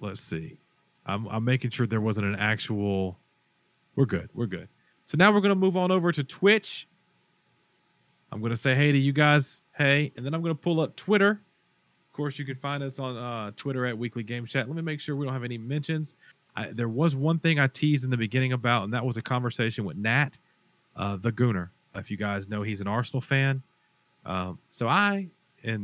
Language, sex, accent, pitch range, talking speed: English, male, American, 110-145 Hz, 220 wpm